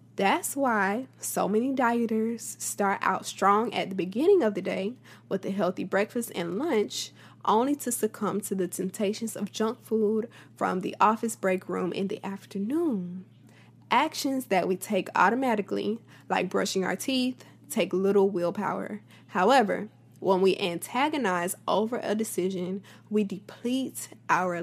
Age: 10-29